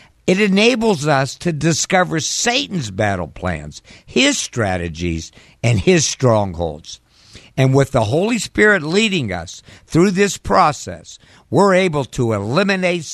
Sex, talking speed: male, 125 wpm